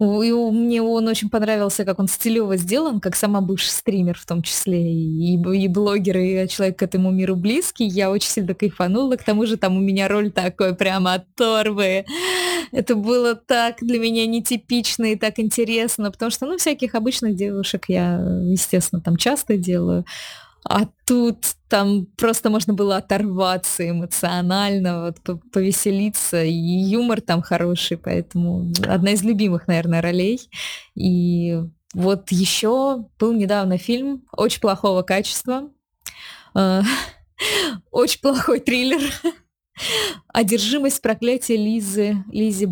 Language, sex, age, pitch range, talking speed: Russian, female, 20-39, 185-235 Hz, 130 wpm